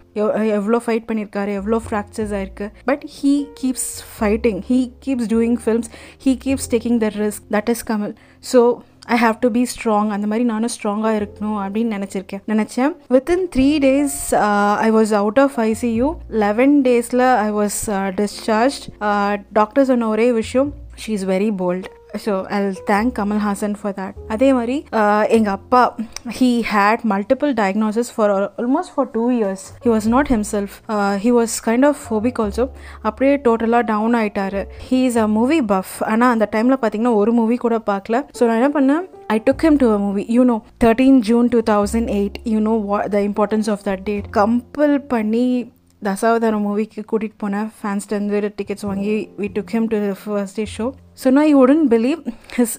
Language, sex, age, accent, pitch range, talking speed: Tamil, female, 20-39, native, 210-245 Hz, 170 wpm